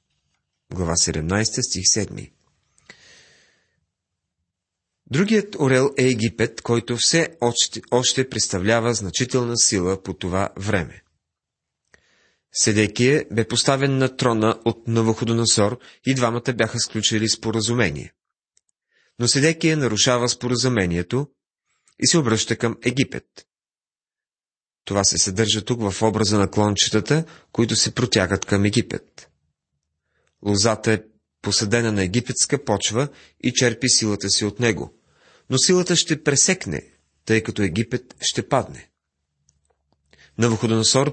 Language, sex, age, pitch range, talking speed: Bulgarian, male, 30-49, 95-125 Hz, 105 wpm